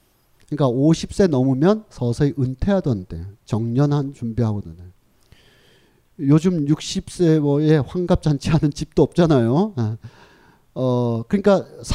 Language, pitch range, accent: Korean, 120-170 Hz, native